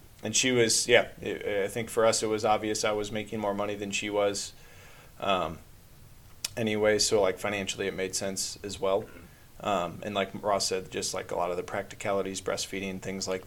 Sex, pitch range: male, 100-115 Hz